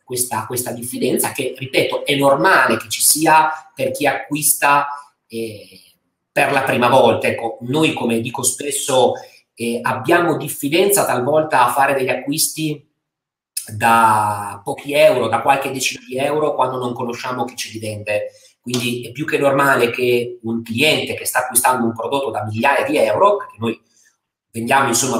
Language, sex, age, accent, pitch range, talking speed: Italian, male, 30-49, native, 115-145 Hz, 155 wpm